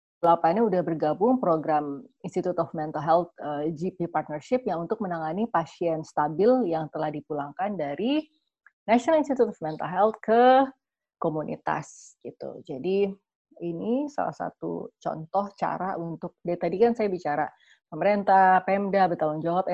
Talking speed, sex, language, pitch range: 135 wpm, female, Indonesian, 160-230 Hz